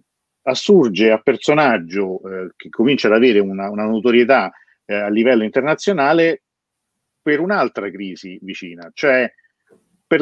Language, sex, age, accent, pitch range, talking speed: Italian, male, 40-59, native, 100-125 Hz, 125 wpm